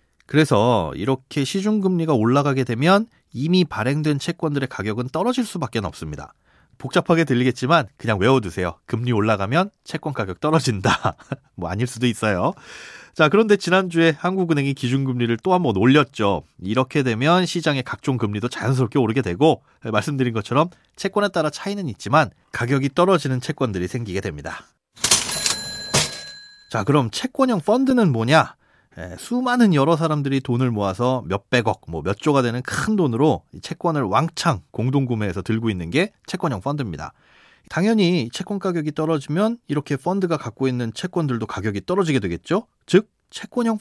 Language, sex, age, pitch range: Korean, male, 30-49, 120-185 Hz